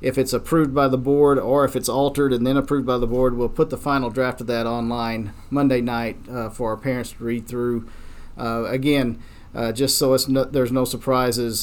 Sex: male